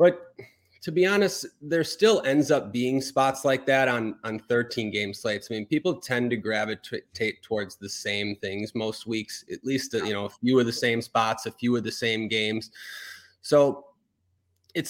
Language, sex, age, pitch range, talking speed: English, male, 30-49, 105-125 Hz, 190 wpm